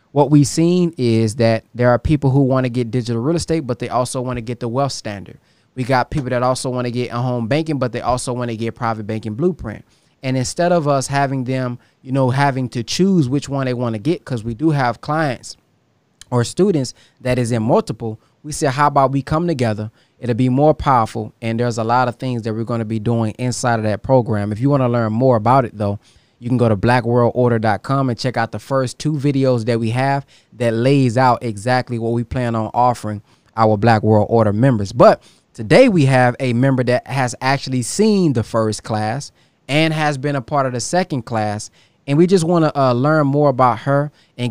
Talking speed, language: 230 wpm, English